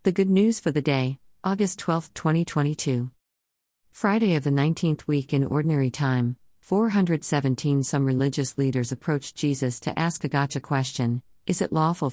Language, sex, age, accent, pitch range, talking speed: English, female, 50-69, American, 130-165 Hz, 155 wpm